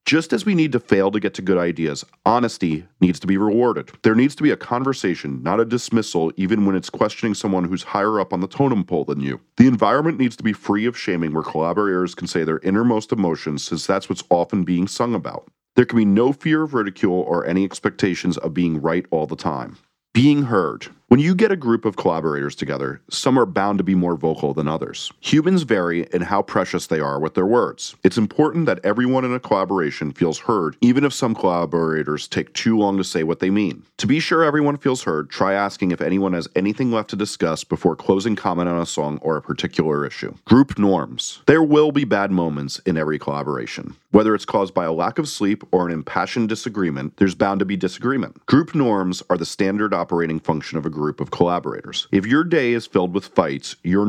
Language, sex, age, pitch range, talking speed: English, male, 40-59, 85-115 Hz, 220 wpm